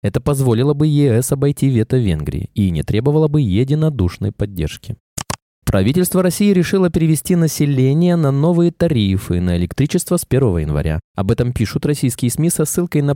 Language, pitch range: Russian, 100-155 Hz